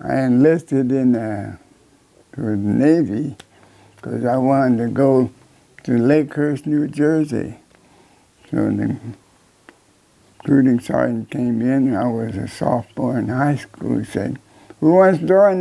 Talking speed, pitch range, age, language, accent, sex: 130 wpm, 125-160 Hz, 60-79, English, American, male